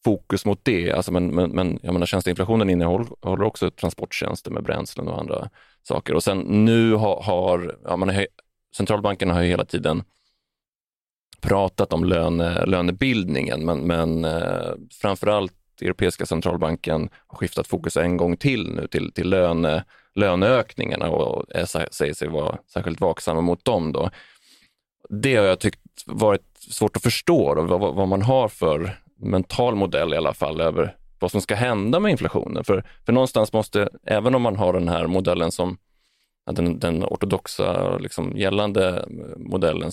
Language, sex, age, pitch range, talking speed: Swedish, male, 30-49, 85-105 Hz, 140 wpm